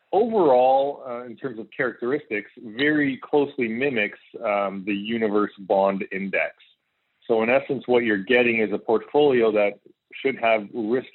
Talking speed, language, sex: 145 wpm, English, male